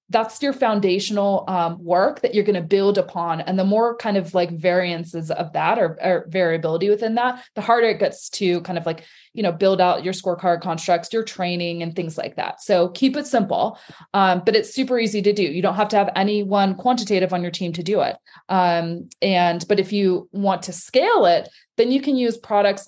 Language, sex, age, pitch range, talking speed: English, female, 20-39, 180-215 Hz, 220 wpm